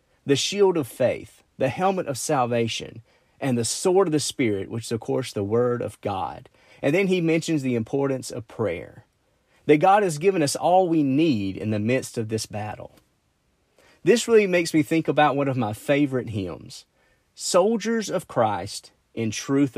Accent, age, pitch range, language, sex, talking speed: American, 40-59, 115-160 Hz, English, male, 180 wpm